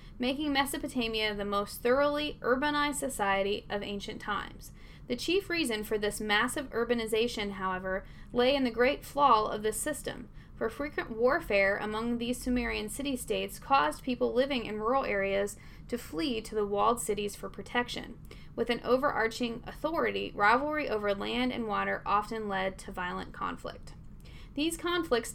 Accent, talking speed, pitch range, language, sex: American, 150 wpm, 210-265 Hz, English, female